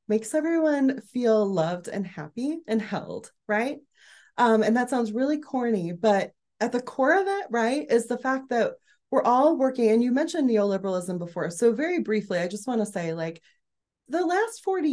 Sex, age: female, 20-39